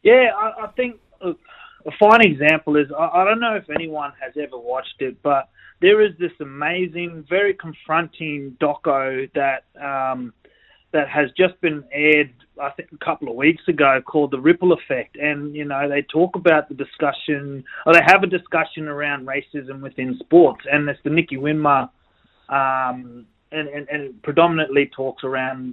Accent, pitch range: Australian, 130-155 Hz